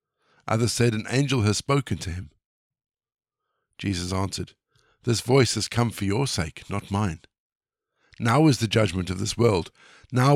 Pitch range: 100-125 Hz